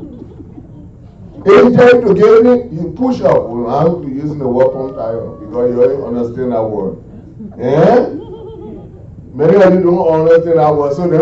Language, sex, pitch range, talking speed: English, male, 175-245 Hz, 175 wpm